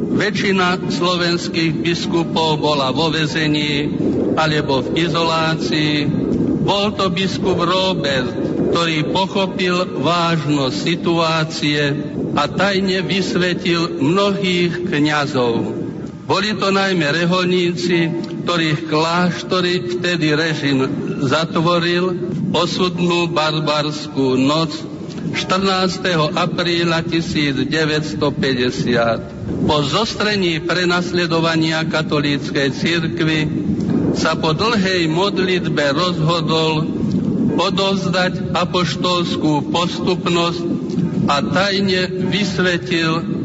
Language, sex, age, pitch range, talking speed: Slovak, male, 50-69, 155-180 Hz, 75 wpm